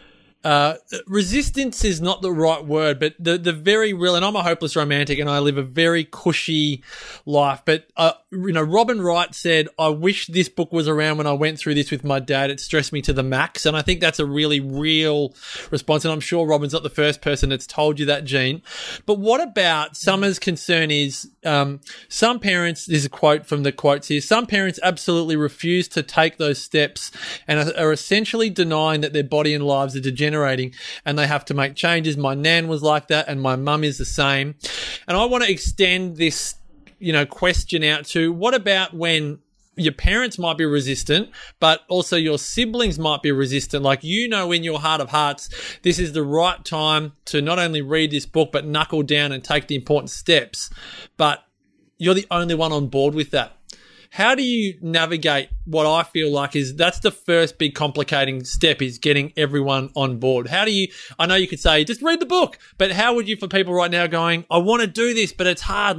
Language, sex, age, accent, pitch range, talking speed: English, male, 20-39, Australian, 145-180 Hz, 220 wpm